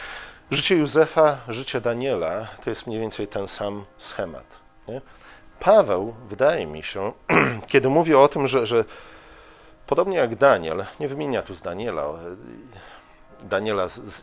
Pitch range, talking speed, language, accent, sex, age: 105-130 Hz, 140 wpm, Polish, native, male, 40-59